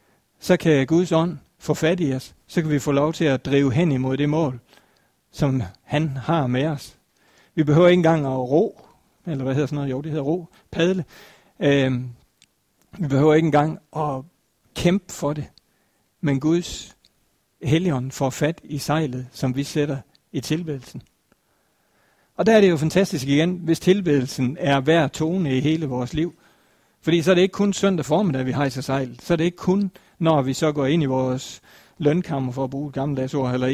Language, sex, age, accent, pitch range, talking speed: Danish, male, 60-79, native, 135-165 Hz, 190 wpm